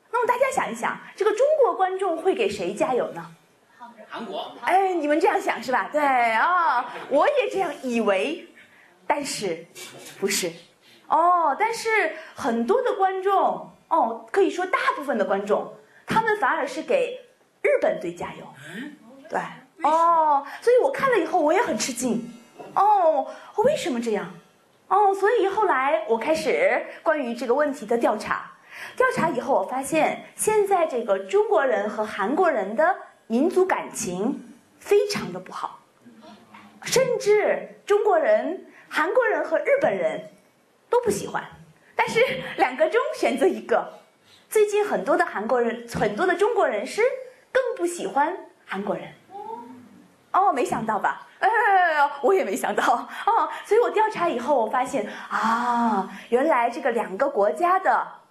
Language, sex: Korean, female